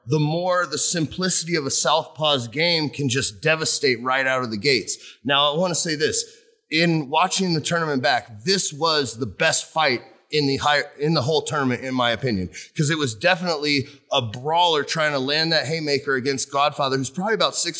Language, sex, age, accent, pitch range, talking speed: English, male, 30-49, American, 135-170 Hz, 200 wpm